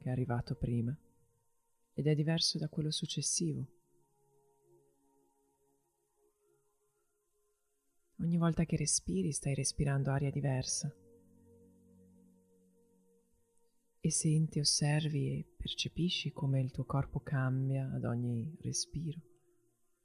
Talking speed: 95 wpm